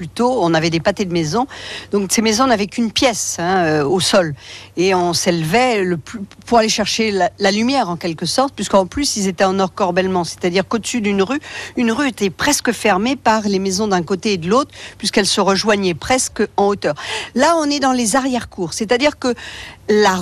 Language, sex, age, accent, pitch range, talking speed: French, female, 50-69, French, 180-240 Hz, 200 wpm